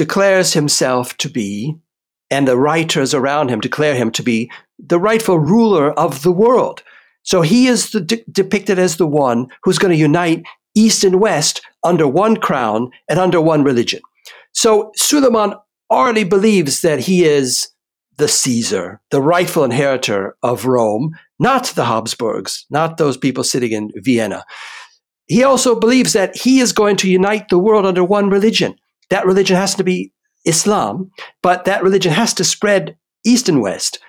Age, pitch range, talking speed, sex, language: 60-79, 145-205 Hz, 160 wpm, male, English